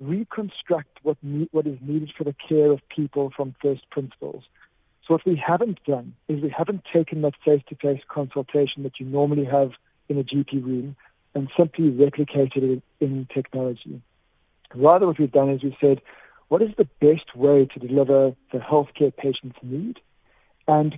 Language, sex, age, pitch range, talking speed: English, male, 50-69, 135-160 Hz, 170 wpm